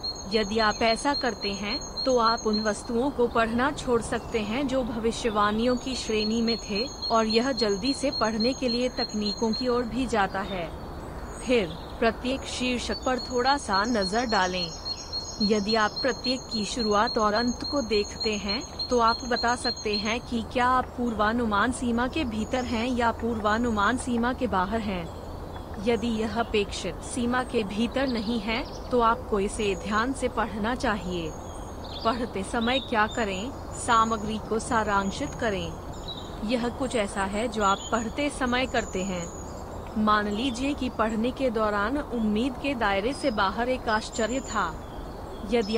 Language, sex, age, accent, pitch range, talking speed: Hindi, female, 30-49, native, 210-245 Hz, 155 wpm